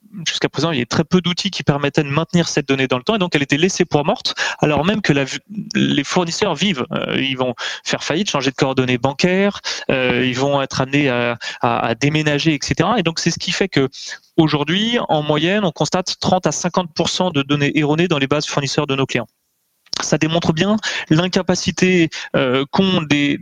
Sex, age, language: male, 30-49, French